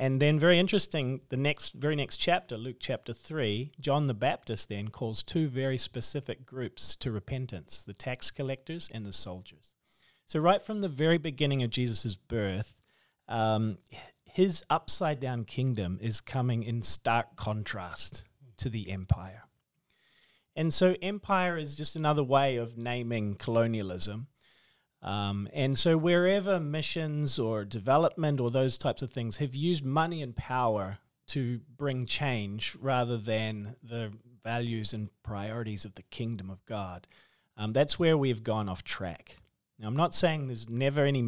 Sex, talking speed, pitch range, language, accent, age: male, 155 wpm, 105-145 Hz, English, Australian, 40-59